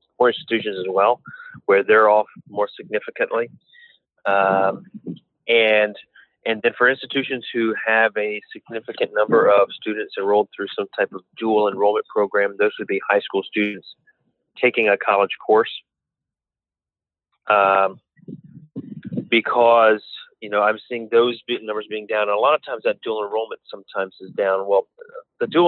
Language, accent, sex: English, American, male